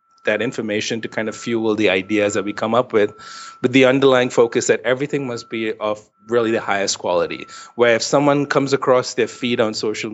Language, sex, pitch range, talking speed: English, male, 105-130 Hz, 205 wpm